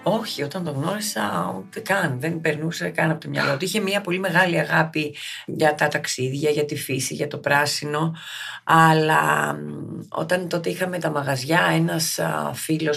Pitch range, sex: 150-190 Hz, female